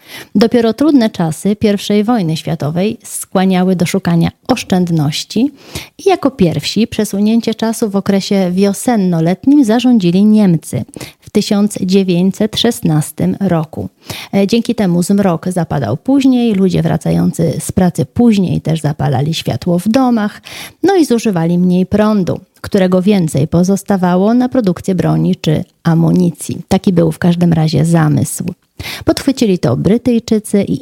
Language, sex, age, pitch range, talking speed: Polish, female, 30-49, 165-215 Hz, 120 wpm